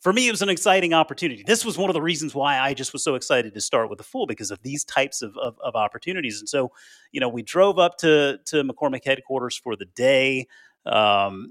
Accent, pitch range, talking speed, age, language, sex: American, 130-175 Hz, 245 wpm, 30-49, English, male